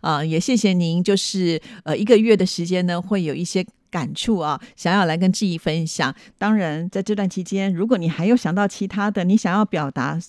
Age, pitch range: 50-69, 165-210 Hz